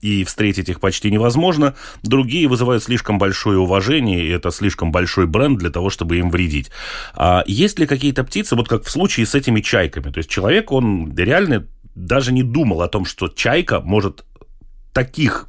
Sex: male